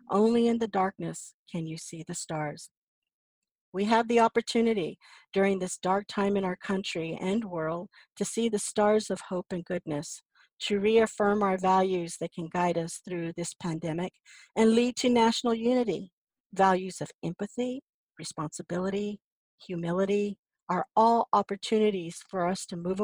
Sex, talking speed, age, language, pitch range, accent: female, 150 wpm, 50-69, English, 175-210 Hz, American